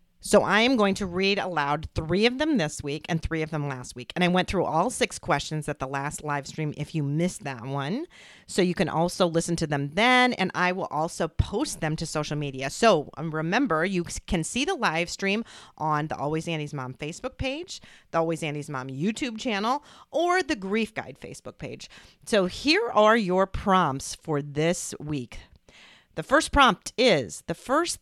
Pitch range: 150-225 Hz